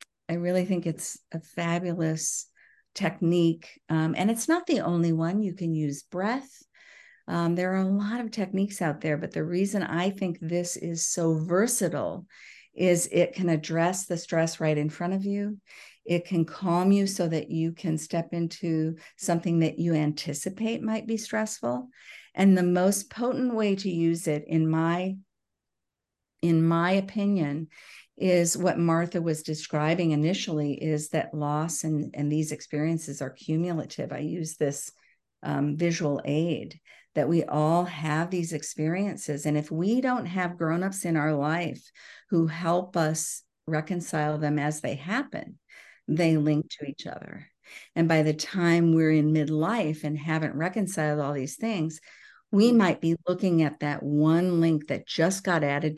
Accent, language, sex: American, English, female